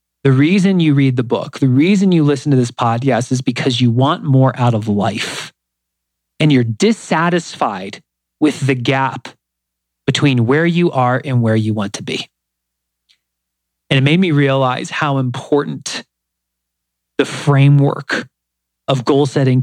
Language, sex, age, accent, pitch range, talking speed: English, male, 40-59, American, 110-175 Hz, 150 wpm